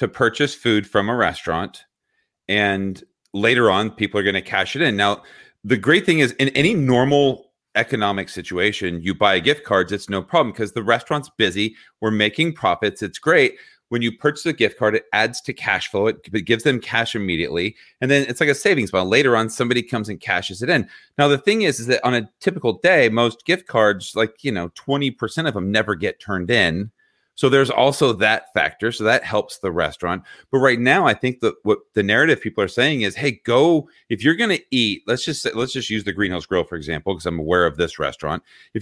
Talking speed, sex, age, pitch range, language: 225 wpm, male, 40-59, 105-140 Hz, English